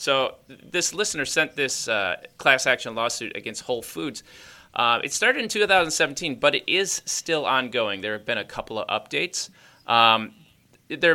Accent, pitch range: American, 115-155 Hz